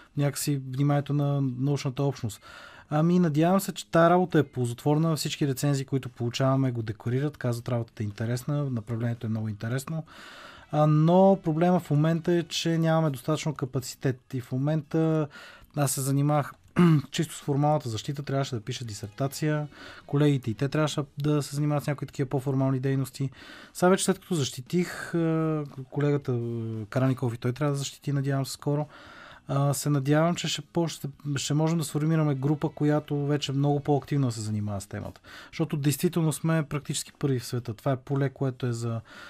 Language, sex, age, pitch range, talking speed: Bulgarian, male, 20-39, 130-150 Hz, 165 wpm